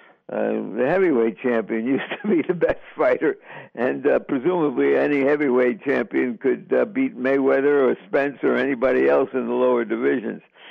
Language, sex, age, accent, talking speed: English, male, 60-79, American, 160 wpm